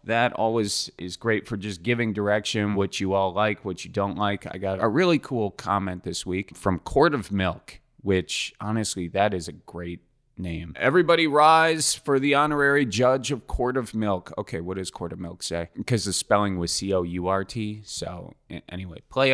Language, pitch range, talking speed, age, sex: English, 90-120 Hz, 185 wpm, 30-49, male